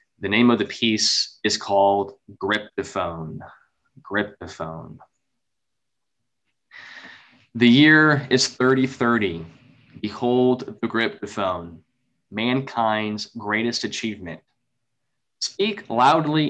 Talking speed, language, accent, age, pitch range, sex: 75 wpm, English, American, 20-39, 110-135 Hz, male